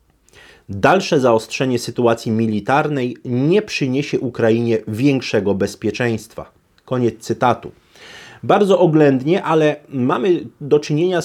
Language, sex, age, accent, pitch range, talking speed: Polish, male, 30-49, native, 110-140 Hz, 90 wpm